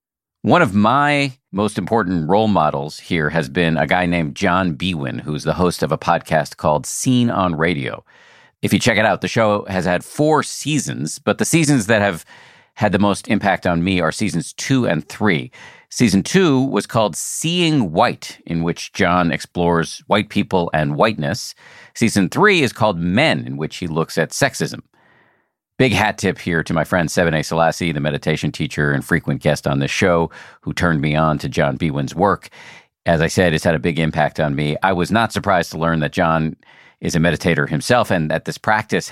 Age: 50-69